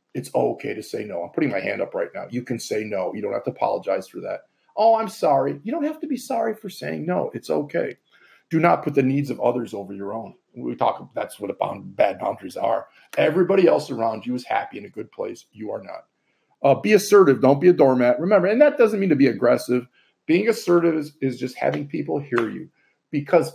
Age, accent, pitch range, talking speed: 40-59, American, 130-215 Hz, 235 wpm